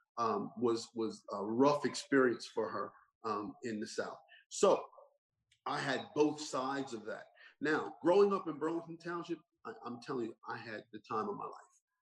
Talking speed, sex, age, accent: 175 wpm, male, 40-59, American